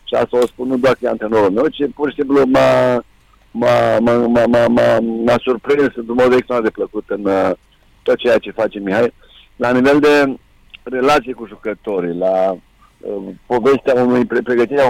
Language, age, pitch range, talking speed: Romanian, 60-79, 115-145 Hz, 175 wpm